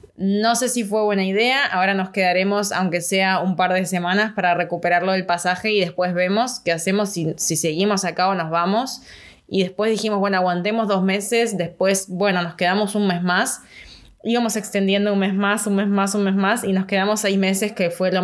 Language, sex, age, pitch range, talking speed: Spanish, female, 20-39, 180-210 Hz, 210 wpm